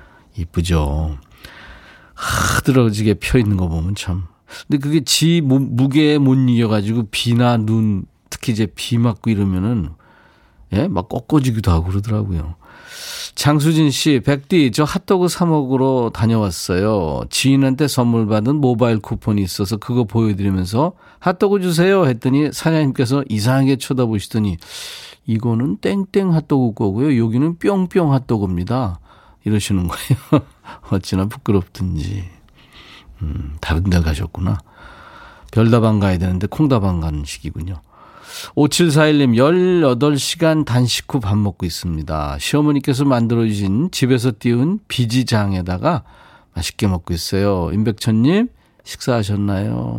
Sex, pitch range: male, 95-140 Hz